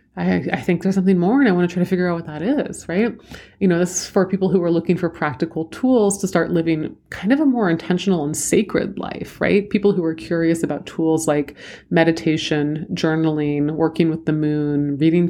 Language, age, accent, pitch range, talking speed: English, 30-49, American, 155-200 Hz, 220 wpm